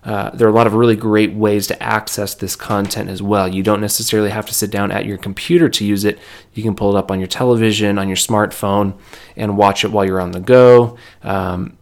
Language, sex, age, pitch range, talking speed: English, male, 30-49, 100-115 Hz, 245 wpm